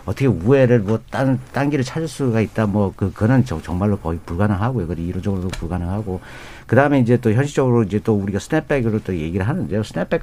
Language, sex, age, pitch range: Korean, male, 50-69, 95-135 Hz